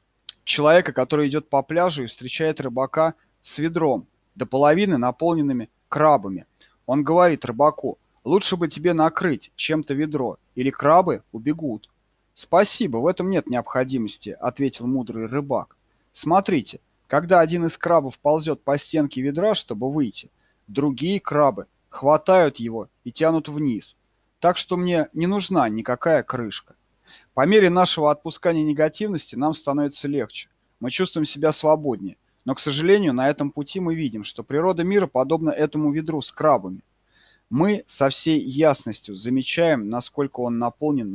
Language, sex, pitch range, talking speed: Russian, male, 120-160 Hz, 140 wpm